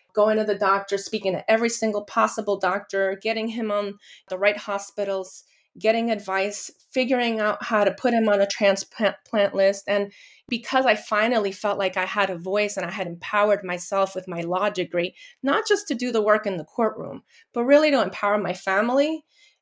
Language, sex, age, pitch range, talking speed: English, female, 30-49, 195-235 Hz, 190 wpm